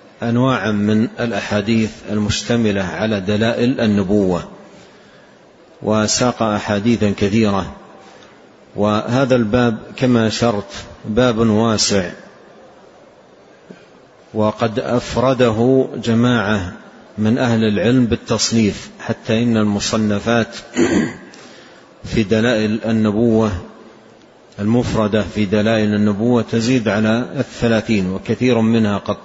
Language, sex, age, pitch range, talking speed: Arabic, male, 40-59, 105-120 Hz, 80 wpm